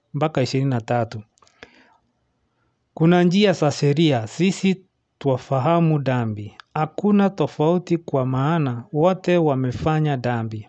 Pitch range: 125-160 Hz